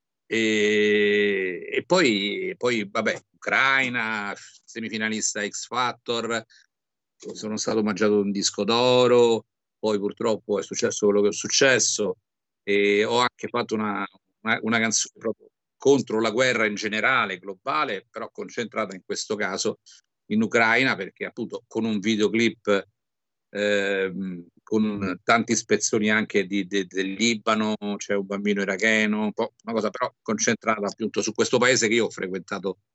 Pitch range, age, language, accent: 100-115 Hz, 50-69, Italian, native